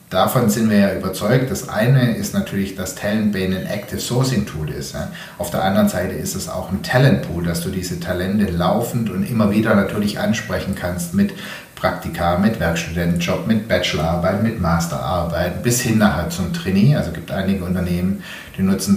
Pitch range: 100-135 Hz